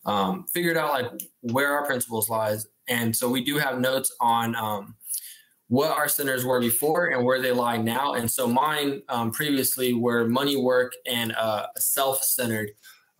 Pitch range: 115-135 Hz